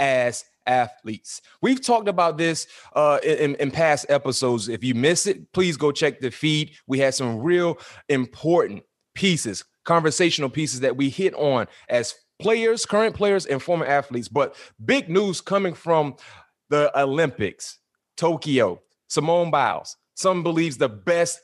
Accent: American